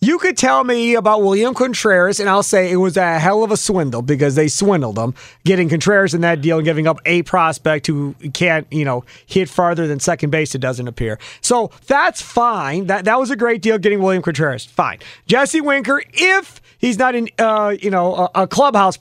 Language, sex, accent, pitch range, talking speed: English, male, American, 160-220 Hz, 215 wpm